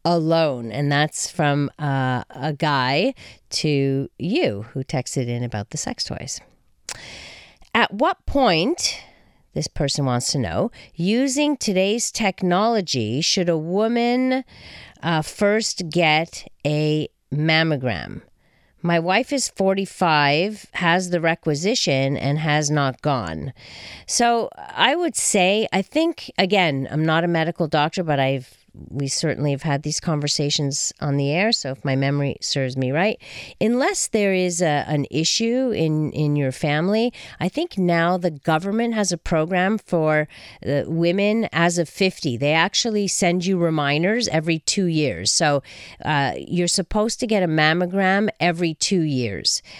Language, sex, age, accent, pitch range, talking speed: English, female, 40-59, American, 145-195 Hz, 140 wpm